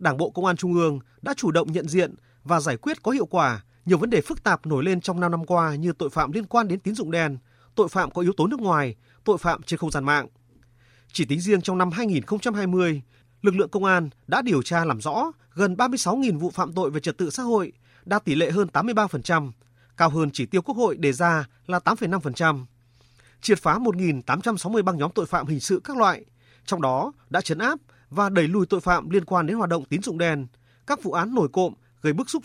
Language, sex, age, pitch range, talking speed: Vietnamese, male, 30-49, 140-205 Hz, 235 wpm